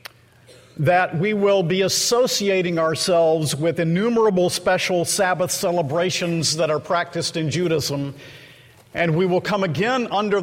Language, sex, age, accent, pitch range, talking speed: English, male, 50-69, American, 155-195 Hz, 125 wpm